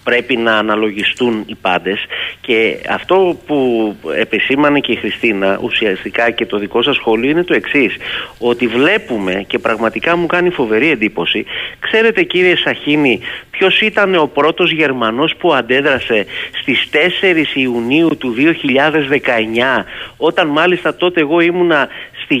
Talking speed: 135 wpm